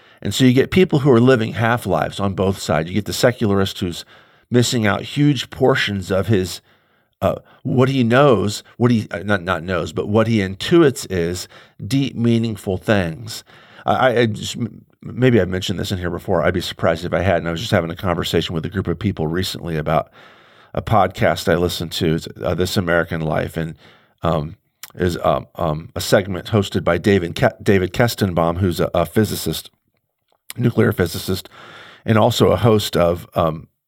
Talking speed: 185 wpm